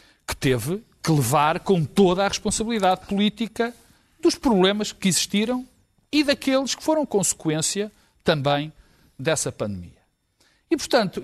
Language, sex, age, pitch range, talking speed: Portuguese, male, 50-69, 155-255 Hz, 125 wpm